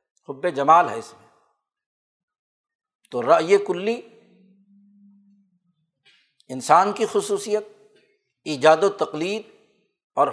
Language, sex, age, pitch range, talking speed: Urdu, male, 60-79, 160-225 Hz, 85 wpm